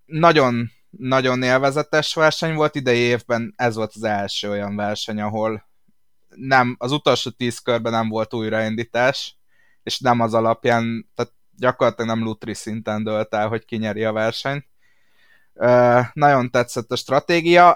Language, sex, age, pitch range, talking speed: Hungarian, male, 20-39, 110-130 Hz, 140 wpm